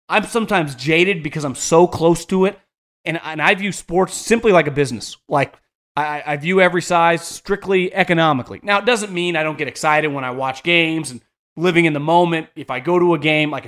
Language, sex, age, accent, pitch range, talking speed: English, male, 30-49, American, 145-190 Hz, 220 wpm